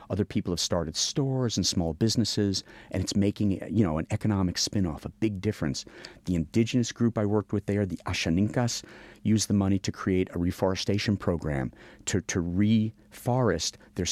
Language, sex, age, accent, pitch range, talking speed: English, male, 50-69, American, 85-110 Hz, 170 wpm